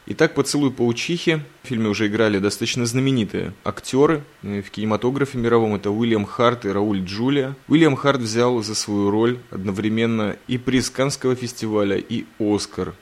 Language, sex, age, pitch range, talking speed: Russian, male, 20-39, 100-120 Hz, 150 wpm